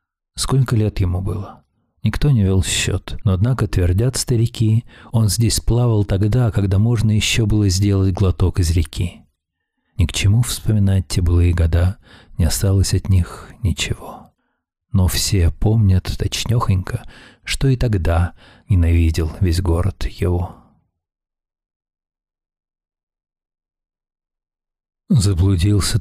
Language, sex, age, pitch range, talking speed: Russian, male, 40-59, 90-105 Hz, 110 wpm